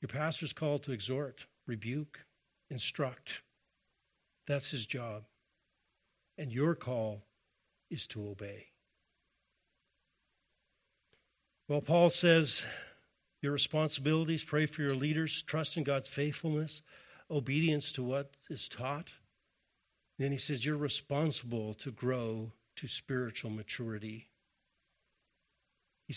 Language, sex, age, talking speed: English, male, 50-69, 105 wpm